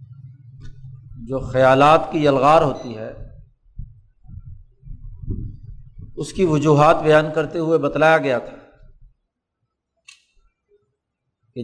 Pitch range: 125-160 Hz